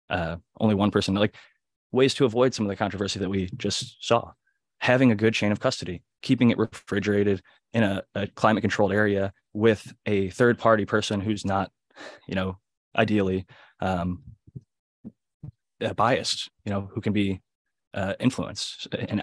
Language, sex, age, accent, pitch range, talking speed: English, male, 20-39, American, 95-115 Hz, 160 wpm